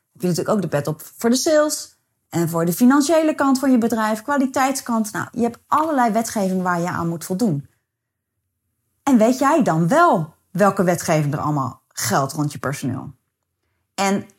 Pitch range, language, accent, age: 155-235 Hz, Dutch, Dutch, 30-49